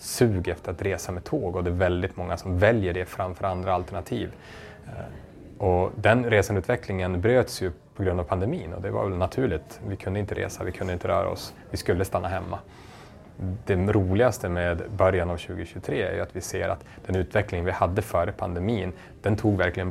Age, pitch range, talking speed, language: 30-49, 90-105 Hz, 195 wpm, Swedish